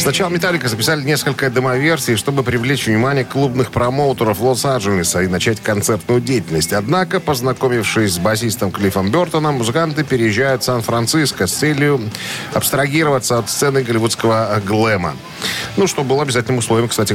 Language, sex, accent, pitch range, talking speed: Russian, male, native, 110-145 Hz, 135 wpm